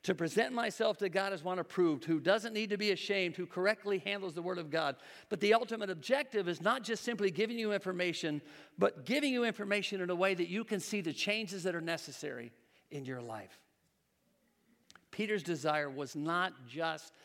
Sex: male